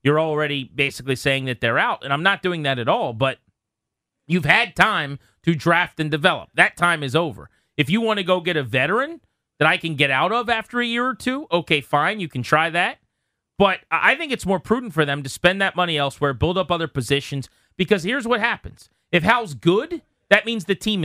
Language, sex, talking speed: English, male, 225 wpm